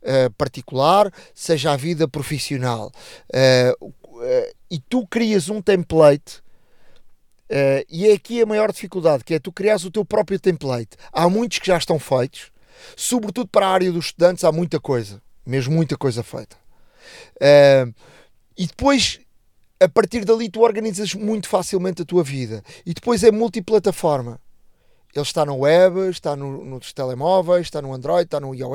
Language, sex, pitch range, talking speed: Portuguese, male, 140-190 Hz, 150 wpm